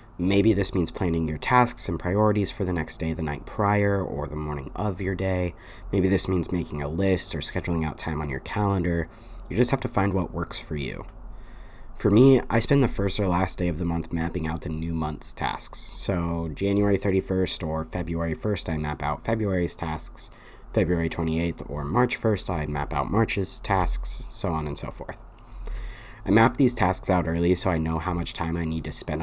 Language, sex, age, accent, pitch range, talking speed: English, male, 30-49, American, 80-100 Hz, 210 wpm